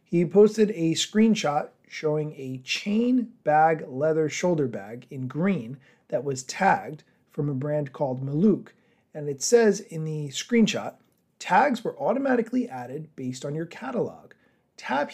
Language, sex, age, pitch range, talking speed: English, male, 30-49, 145-200 Hz, 145 wpm